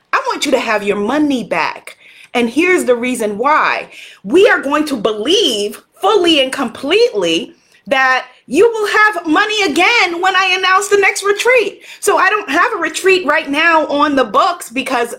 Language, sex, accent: English, female, American